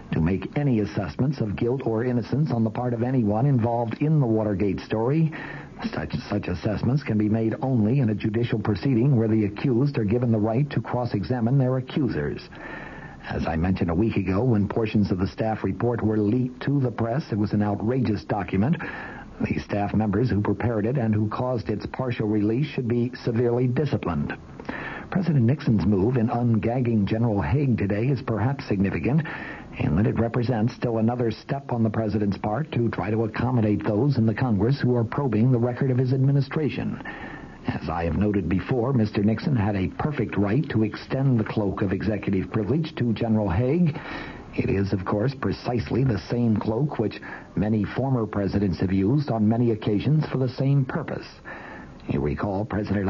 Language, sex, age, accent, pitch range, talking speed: English, male, 60-79, American, 105-130 Hz, 185 wpm